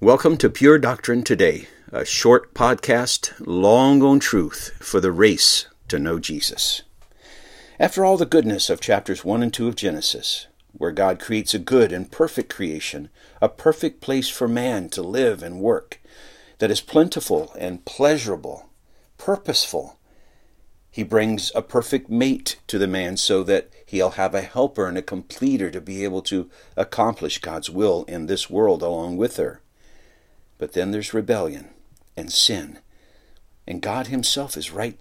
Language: English